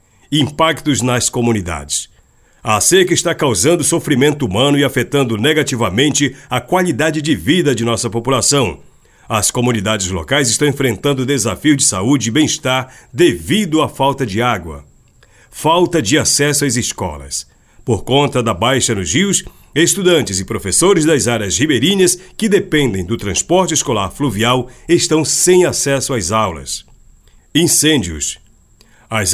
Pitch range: 110-150 Hz